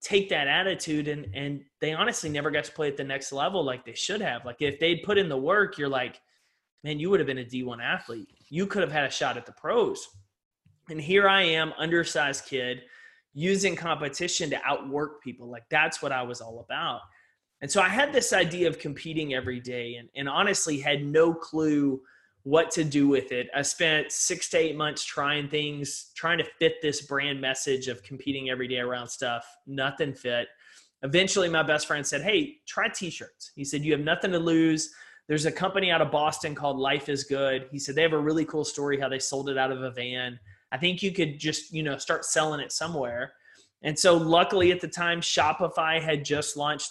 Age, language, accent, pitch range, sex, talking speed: 20-39, English, American, 135-165 Hz, male, 215 wpm